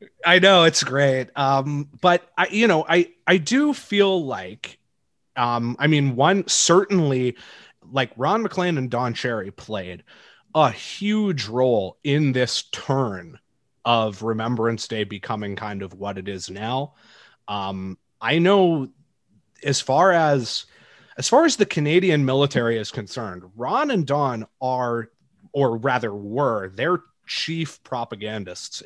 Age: 30-49